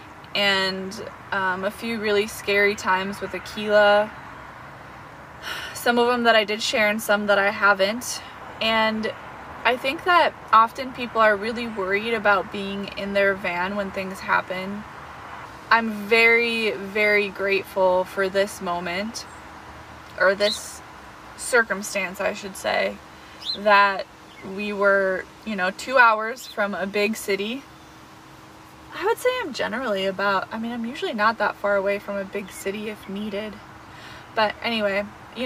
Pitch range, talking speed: 190-220 Hz, 145 wpm